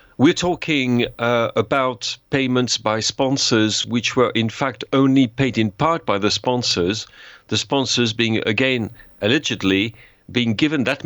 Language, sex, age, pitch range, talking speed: English, male, 50-69, 105-130 Hz, 140 wpm